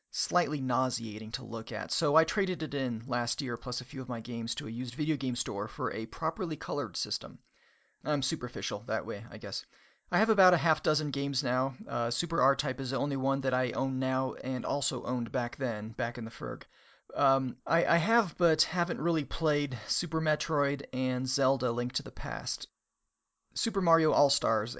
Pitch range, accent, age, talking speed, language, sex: 125-155 Hz, American, 40-59, 200 wpm, English, male